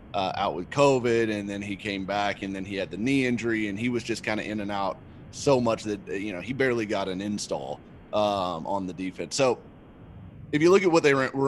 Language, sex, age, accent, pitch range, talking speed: English, male, 30-49, American, 100-125 Hz, 245 wpm